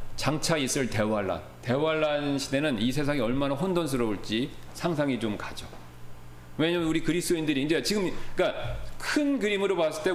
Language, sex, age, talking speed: English, male, 40-59, 130 wpm